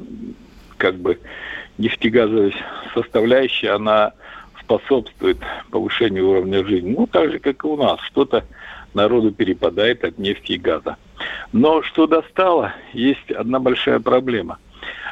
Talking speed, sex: 120 wpm, male